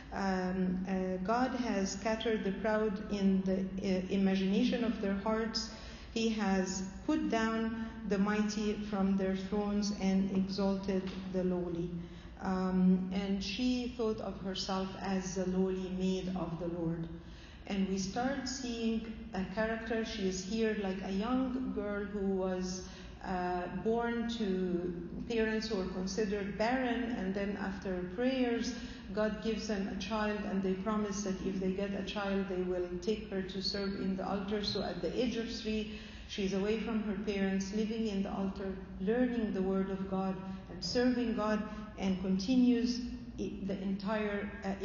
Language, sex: English, female